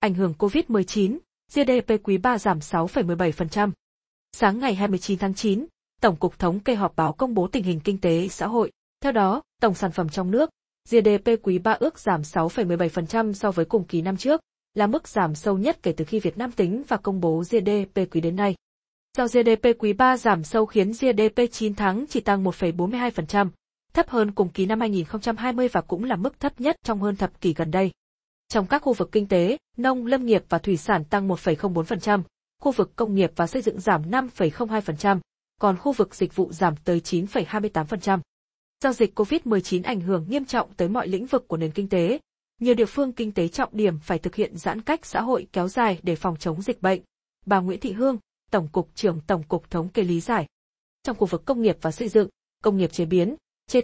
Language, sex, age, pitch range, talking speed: Vietnamese, female, 20-39, 180-230 Hz, 210 wpm